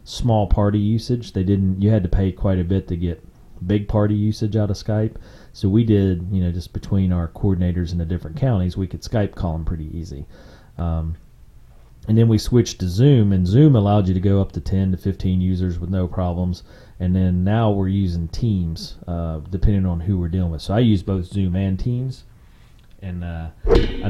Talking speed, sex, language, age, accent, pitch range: 210 wpm, male, English, 30-49, American, 90-105 Hz